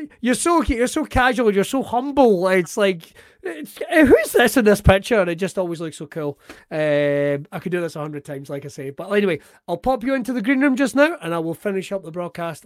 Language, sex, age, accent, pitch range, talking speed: English, male, 30-49, British, 155-230 Hz, 245 wpm